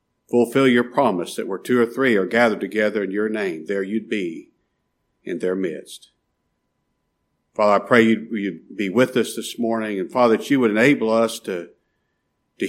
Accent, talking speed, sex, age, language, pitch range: American, 185 wpm, male, 50-69, English, 105-125 Hz